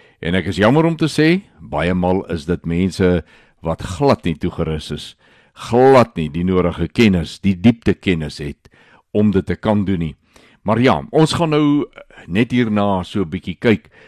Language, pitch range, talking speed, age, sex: Swedish, 85-110 Hz, 175 wpm, 60-79, male